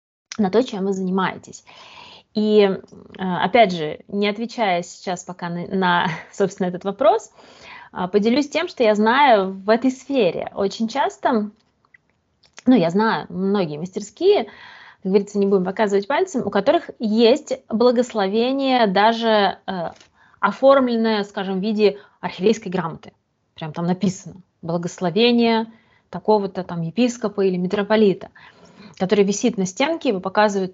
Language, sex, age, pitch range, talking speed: Russian, female, 30-49, 190-230 Hz, 125 wpm